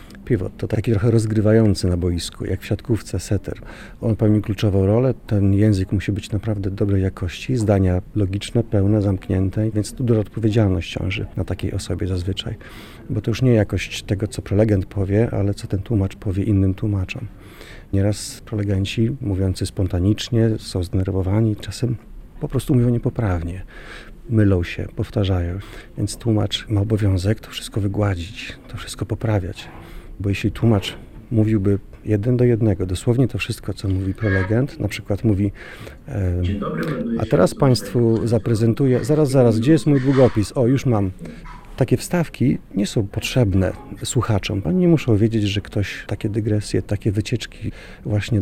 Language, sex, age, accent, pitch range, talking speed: Polish, male, 40-59, native, 100-115 Hz, 150 wpm